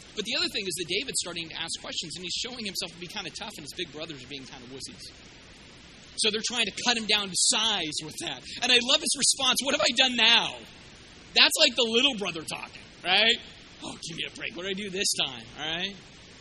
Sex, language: male, English